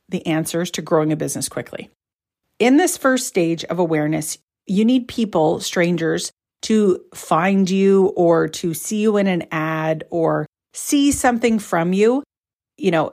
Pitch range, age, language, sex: 160-210 Hz, 40-59, English, female